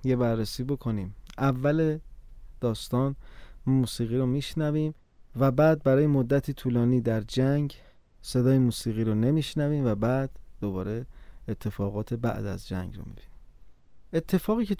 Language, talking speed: Persian, 120 wpm